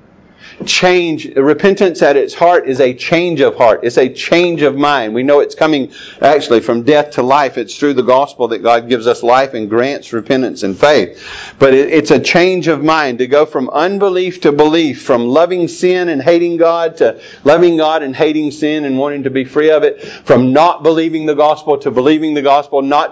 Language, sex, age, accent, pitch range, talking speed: English, male, 50-69, American, 140-175 Hz, 210 wpm